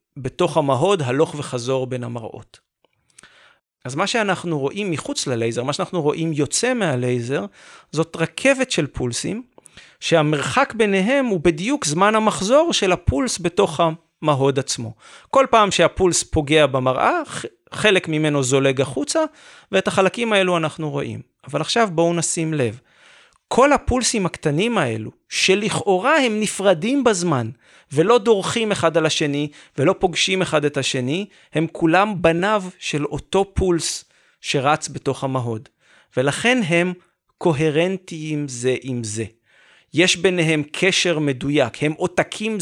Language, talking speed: Hebrew, 125 wpm